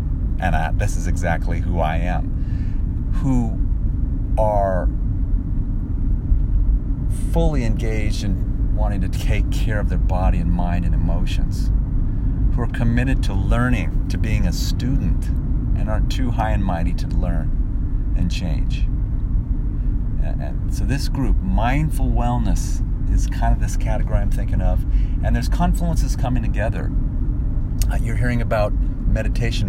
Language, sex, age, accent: English, male, 40-59, American